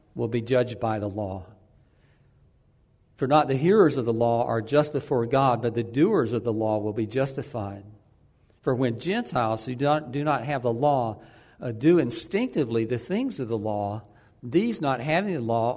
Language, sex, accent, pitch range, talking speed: English, male, American, 110-140 Hz, 185 wpm